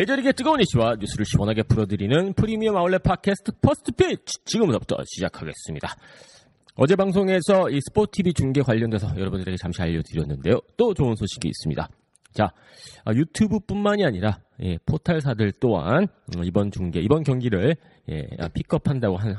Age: 40-59